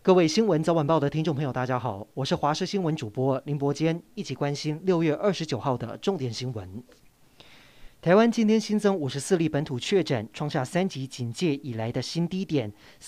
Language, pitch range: Chinese, 135-185 Hz